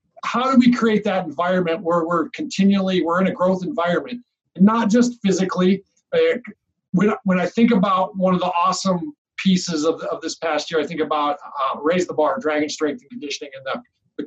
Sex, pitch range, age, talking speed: male, 170-205 Hz, 50-69, 195 wpm